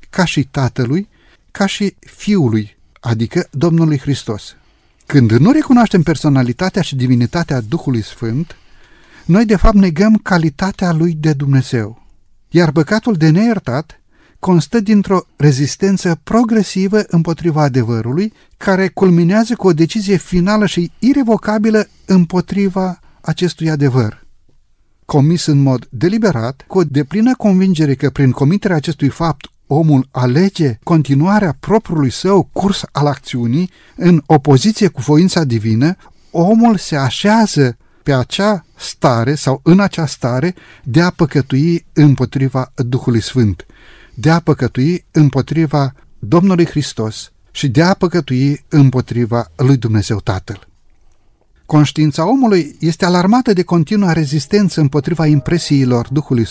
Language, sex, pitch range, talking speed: Romanian, male, 135-185 Hz, 120 wpm